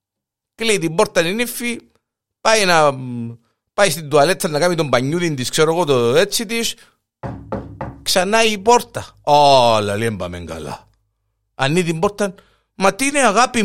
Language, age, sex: Greek, 50-69, male